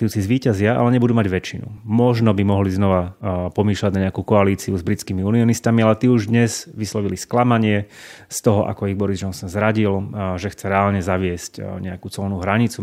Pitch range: 95-120 Hz